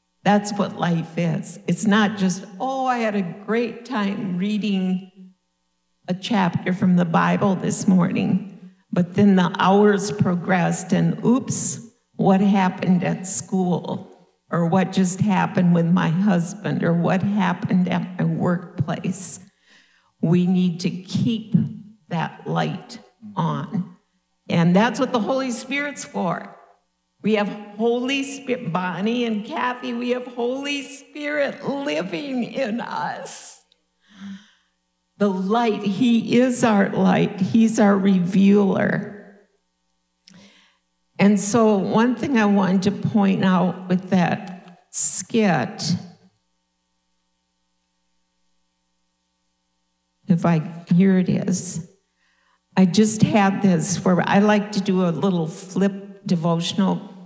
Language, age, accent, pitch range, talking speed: English, 50-69, American, 175-210 Hz, 115 wpm